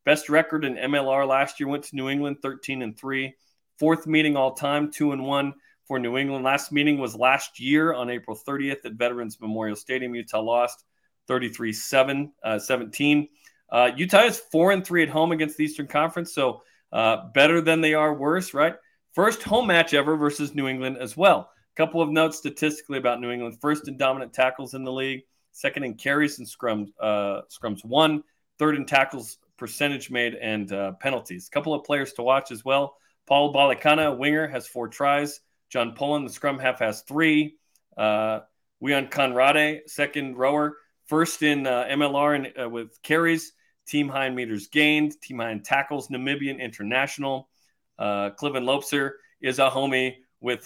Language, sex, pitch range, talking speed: English, male, 125-150 Hz, 180 wpm